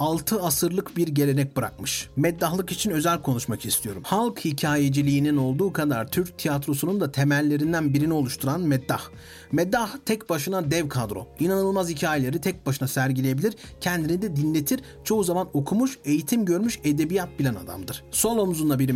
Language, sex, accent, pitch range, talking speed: Turkish, male, native, 140-190 Hz, 140 wpm